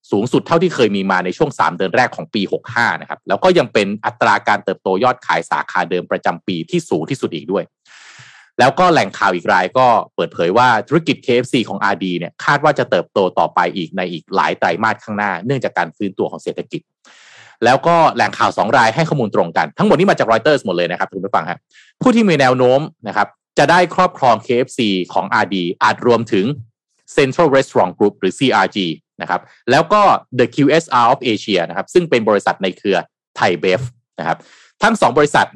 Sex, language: male, Thai